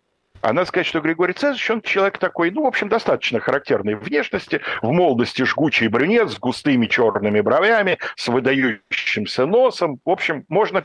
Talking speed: 165 wpm